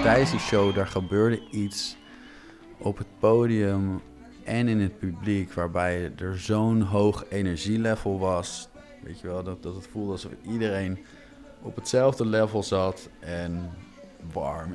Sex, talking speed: male, 135 wpm